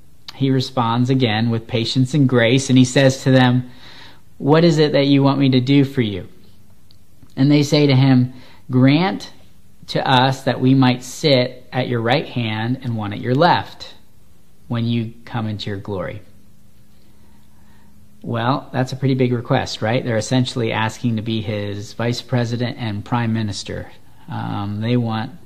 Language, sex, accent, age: English, male, American, 40-59